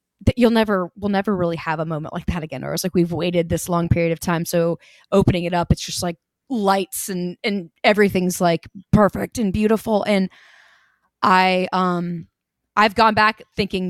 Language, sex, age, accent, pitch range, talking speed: English, female, 20-39, American, 170-190 Hz, 185 wpm